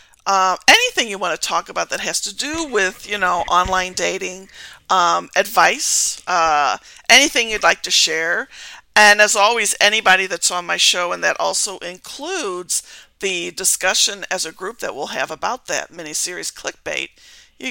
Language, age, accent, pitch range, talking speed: English, 50-69, American, 180-230 Hz, 165 wpm